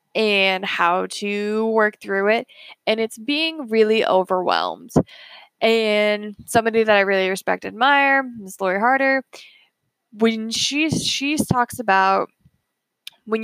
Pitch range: 200-250 Hz